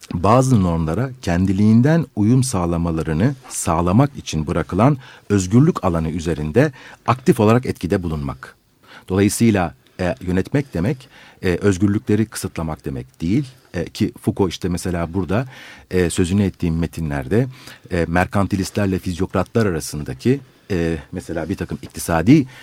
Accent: native